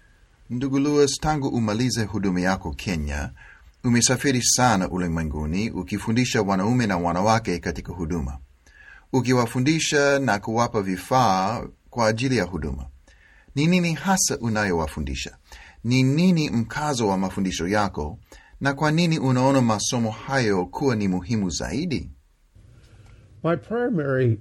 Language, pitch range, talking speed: Swahili, 90-130 Hz, 115 wpm